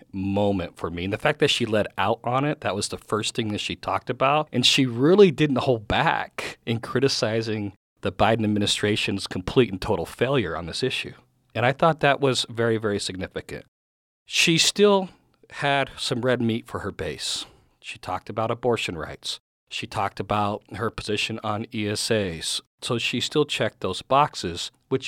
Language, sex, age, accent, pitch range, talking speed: English, male, 40-59, American, 105-130 Hz, 180 wpm